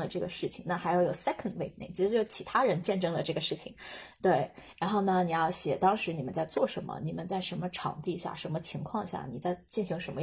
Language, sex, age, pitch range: Chinese, female, 20-39, 180-220 Hz